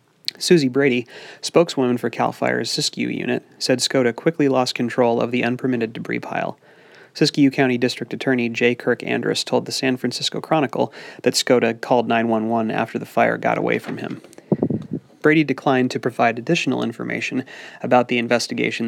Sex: male